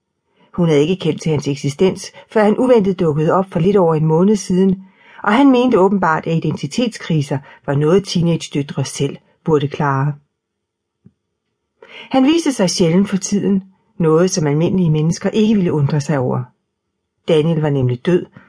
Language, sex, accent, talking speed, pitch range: Danish, female, native, 160 wpm, 150-190 Hz